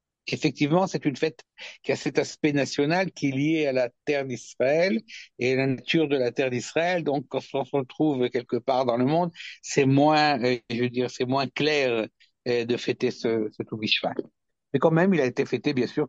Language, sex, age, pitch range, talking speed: French, male, 60-79, 120-150 Hz, 210 wpm